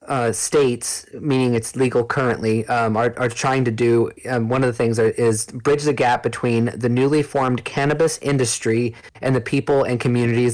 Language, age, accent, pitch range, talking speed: English, 30-49, American, 115-135 Hz, 190 wpm